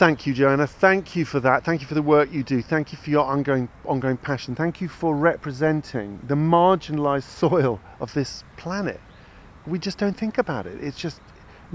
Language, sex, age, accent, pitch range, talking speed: English, male, 40-59, British, 120-155 Hz, 205 wpm